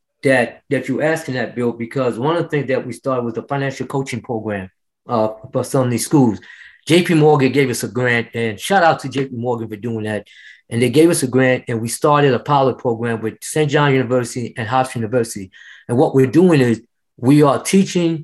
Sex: male